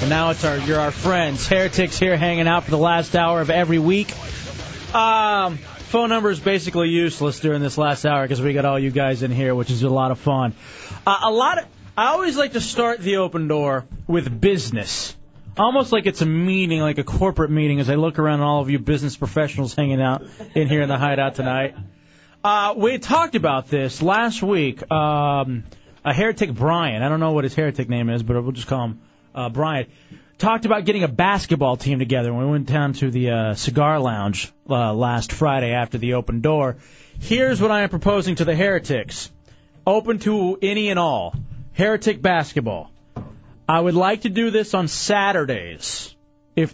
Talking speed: 200 wpm